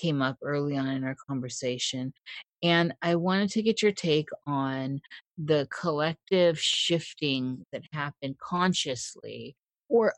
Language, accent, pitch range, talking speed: English, American, 135-180 Hz, 130 wpm